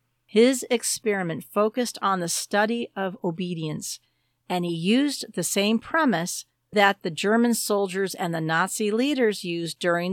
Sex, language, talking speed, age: female, English, 140 wpm, 50-69